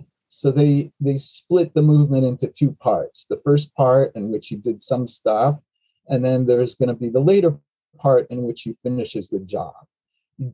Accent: American